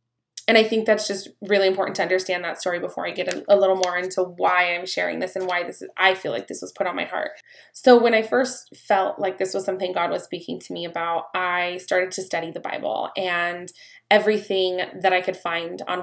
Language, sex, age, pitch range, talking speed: English, female, 20-39, 180-195 Hz, 240 wpm